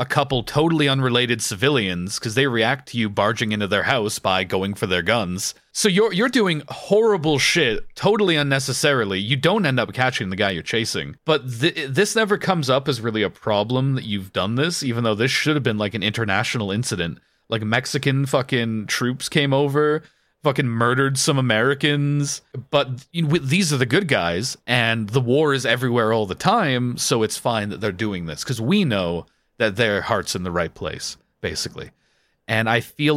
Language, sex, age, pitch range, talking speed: English, male, 30-49, 105-140 Hz, 190 wpm